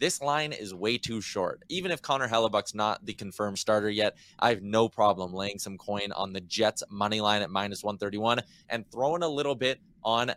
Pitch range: 105-130 Hz